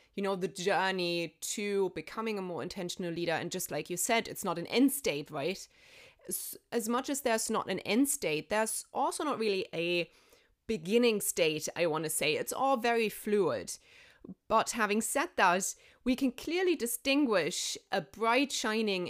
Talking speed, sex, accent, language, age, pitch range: 175 wpm, female, German, English, 20-39, 175-235 Hz